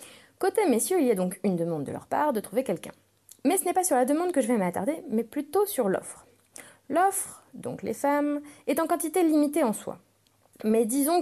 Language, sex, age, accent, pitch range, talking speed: French, female, 20-39, French, 185-275 Hz, 220 wpm